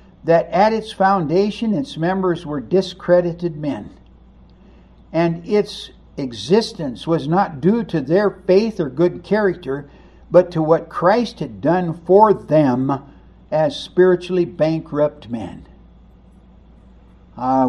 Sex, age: male, 60-79